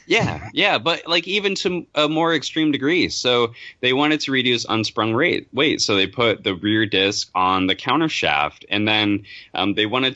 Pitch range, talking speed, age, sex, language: 95-120 Hz, 190 wpm, 20-39, male, English